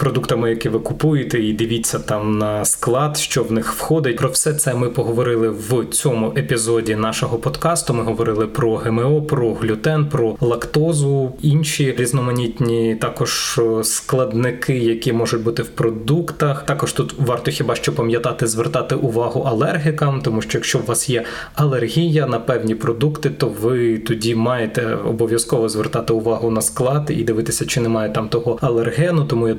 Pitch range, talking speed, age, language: 115-150 Hz, 155 wpm, 20-39, Ukrainian